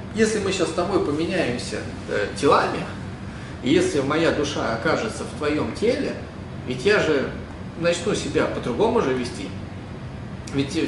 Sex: male